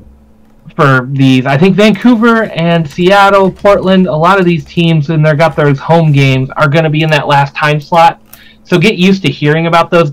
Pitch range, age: 130-160 Hz, 30-49